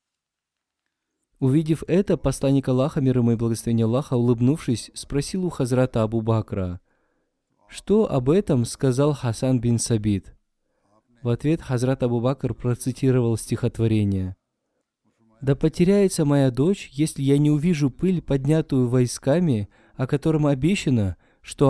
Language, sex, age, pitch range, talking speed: Russian, male, 20-39, 115-140 Hz, 115 wpm